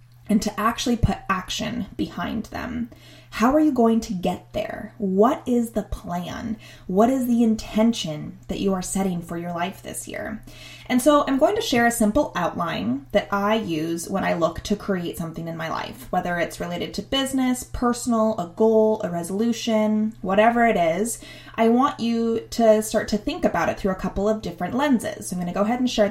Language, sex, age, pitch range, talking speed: English, female, 20-39, 175-230 Hz, 200 wpm